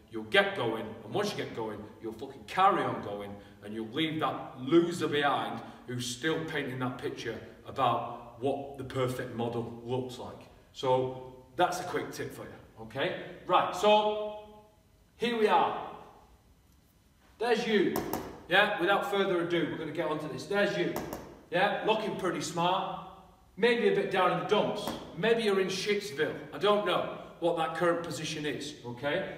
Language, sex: English, male